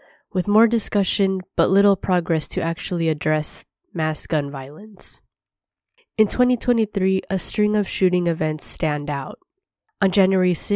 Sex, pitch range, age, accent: female, 155-190 Hz, 20-39, American